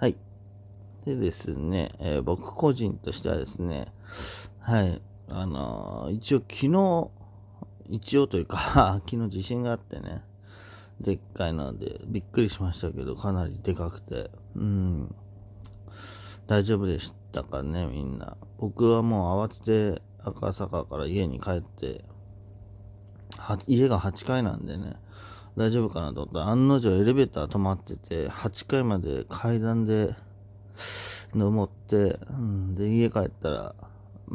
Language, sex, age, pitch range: Japanese, male, 40-59, 95-105 Hz